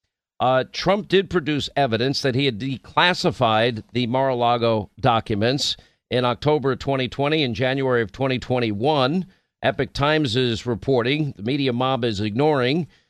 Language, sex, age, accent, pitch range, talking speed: English, male, 50-69, American, 125-155 Hz, 135 wpm